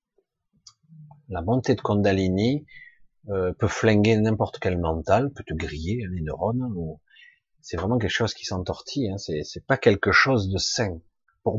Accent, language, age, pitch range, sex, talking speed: French, French, 30-49, 90-120 Hz, male, 165 wpm